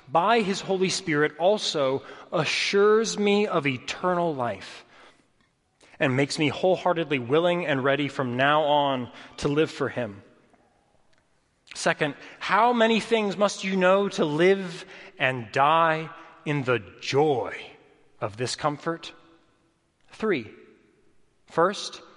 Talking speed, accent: 115 wpm, American